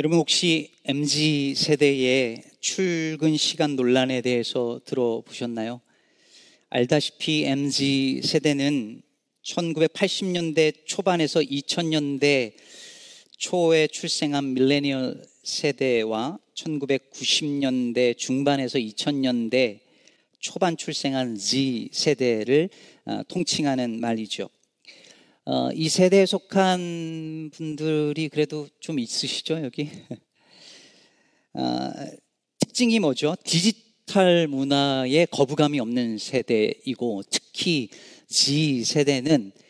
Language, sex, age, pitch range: Korean, male, 40-59, 130-160 Hz